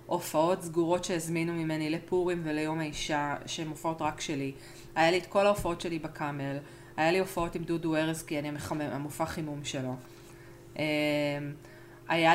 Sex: female